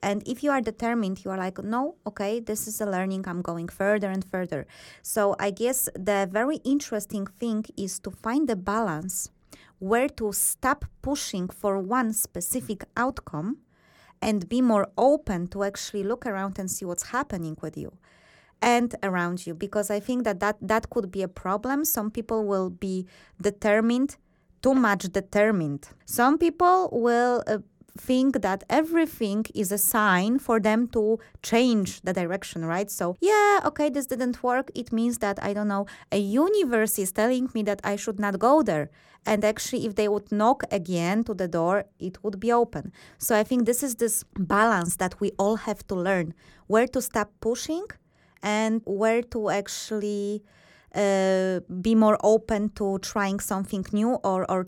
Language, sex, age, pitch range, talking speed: English, female, 20-39, 195-235 Hz, 175 wpm